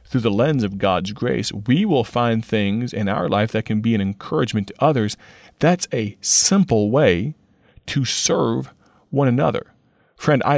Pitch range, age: 110-135 Hz, 40-59